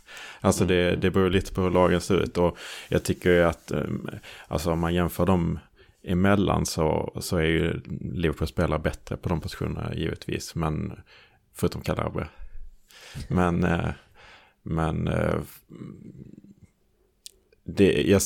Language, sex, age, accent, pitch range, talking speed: Swedish, male, 30-49, Norwegian, 80-90 Hz, 120 wpm